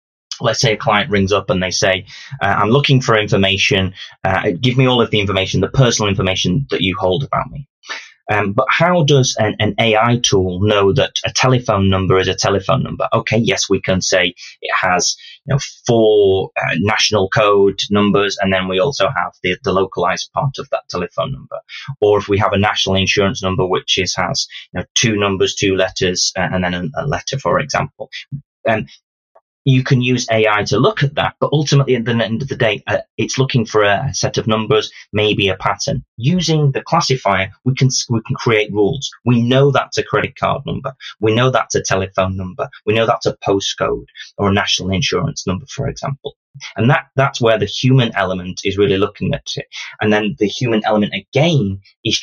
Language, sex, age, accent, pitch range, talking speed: English, male, 20-39, British, 100-135 Hz, 205 wpm